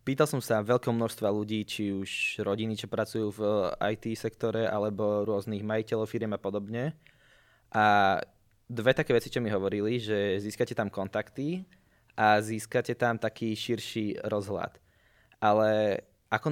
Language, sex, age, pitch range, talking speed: Slovak, male, 20-39, 105-115 Hz, 140 wpm